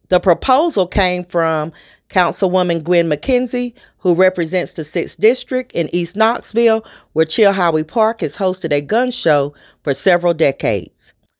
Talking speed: 135 wpm